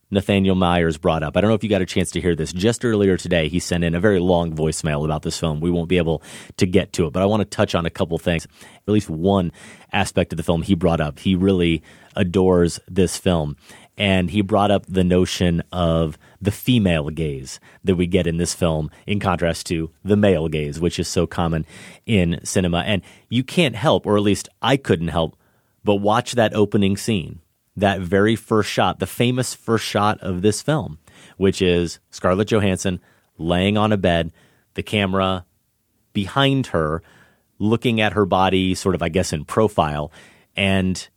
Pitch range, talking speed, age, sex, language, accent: 85-110 Hz, 200 wpm, 30-49, male, English, American